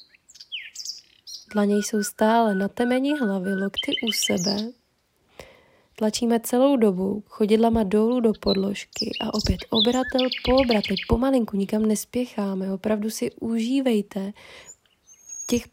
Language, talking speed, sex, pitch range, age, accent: Czech, 110 wpm, female, 200-235 Hz, 20-39, native